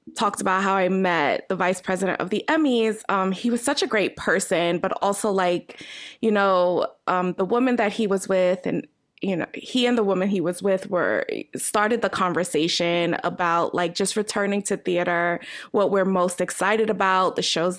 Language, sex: English, female